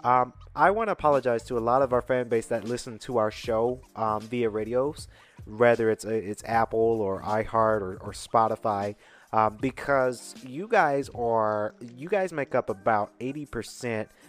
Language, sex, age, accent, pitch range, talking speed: English, male, 30-49, American, 105-130 Hz, 170 wpm